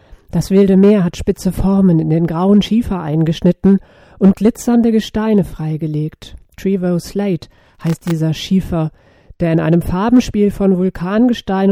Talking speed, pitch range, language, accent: 135 wpm, 160-200 Hz, German, German